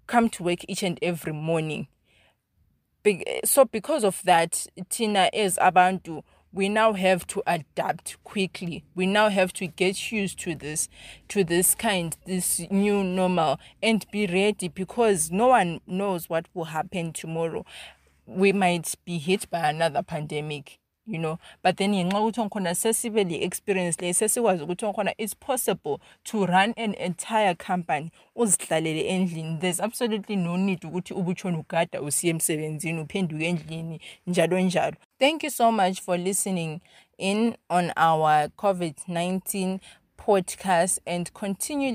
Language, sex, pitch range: English, female, 170-205 Hz